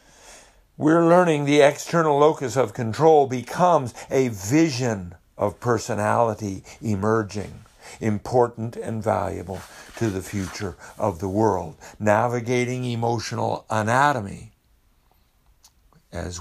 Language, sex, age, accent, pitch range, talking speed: English, male, 60-79, American, 100-145 Hz, 95 wpm